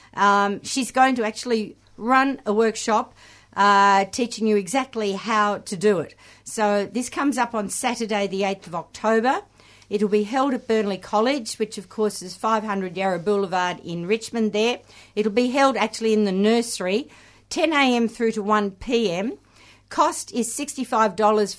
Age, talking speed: 50-69, 155 wpm